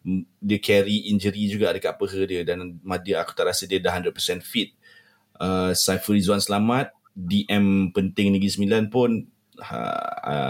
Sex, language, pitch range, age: male, Malay, 90-105 Hz, 20-39